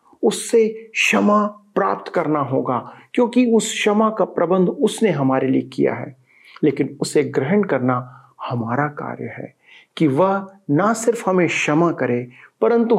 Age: 50-69